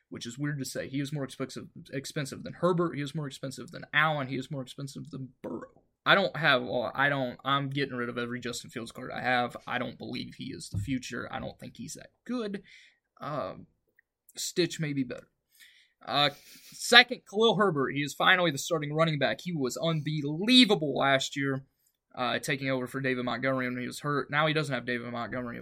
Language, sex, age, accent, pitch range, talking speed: English, male, 20-39, American, 130-170 Hz, 210 wpm